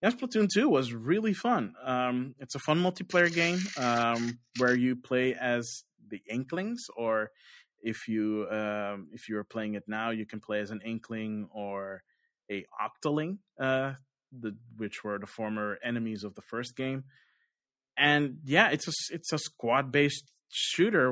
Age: 20-39